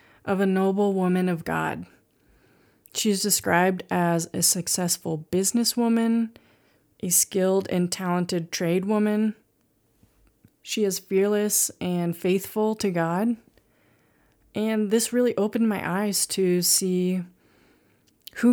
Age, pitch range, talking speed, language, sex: 30-49, 170-200 Hz, 110 wpm, English, female